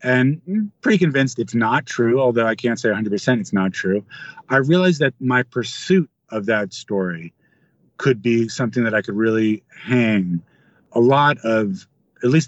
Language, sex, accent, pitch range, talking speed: English, male, American, 110-135 Hz, 170 wpm